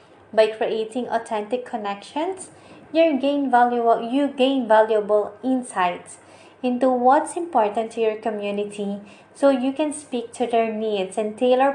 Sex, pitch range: female, 210-255 Hz